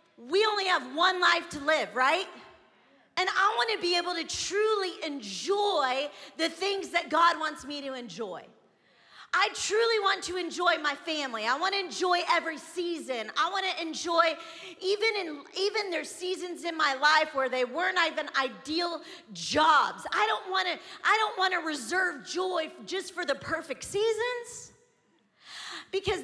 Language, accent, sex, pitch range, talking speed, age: English, American, female, 285-355 Hz, 155 wpm, 40-59